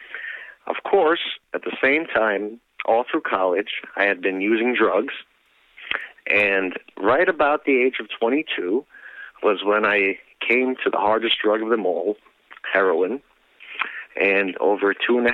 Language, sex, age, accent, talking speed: English, male, 50-69, American, 150 wpm